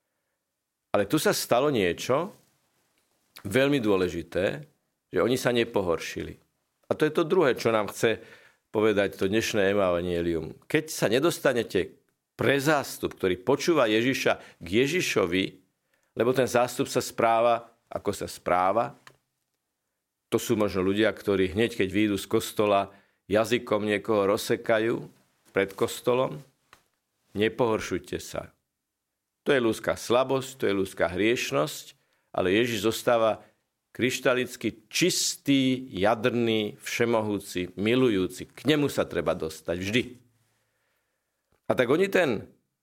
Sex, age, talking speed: male, 50-69, 120 wpm